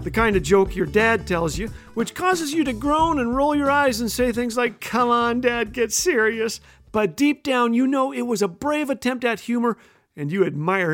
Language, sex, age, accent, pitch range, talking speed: English, male, 40-59, American, 200-260 Hz, 225 wpm